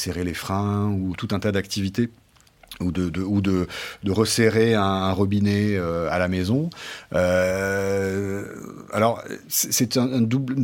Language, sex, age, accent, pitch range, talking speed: French, male, 40-59, French, 90-115 Hz, 150 wpm